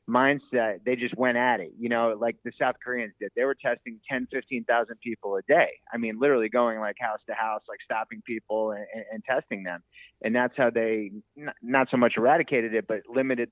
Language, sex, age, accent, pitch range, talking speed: English, male, 30-49, American, 110-130 Hz, 215 wpm